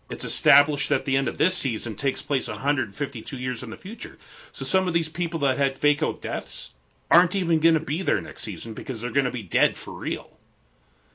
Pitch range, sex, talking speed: 100-145 Hz, male, 215 wpm